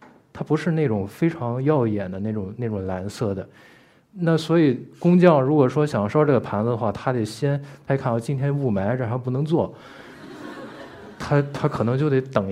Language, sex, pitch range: Chinese, male, 110-150 Hz